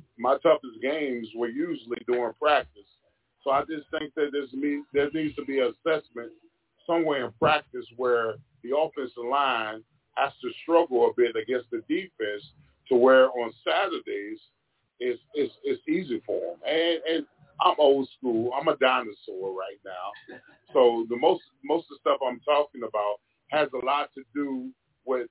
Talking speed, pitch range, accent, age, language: 170 wpm, 125-160 Hz, American, 30-49, English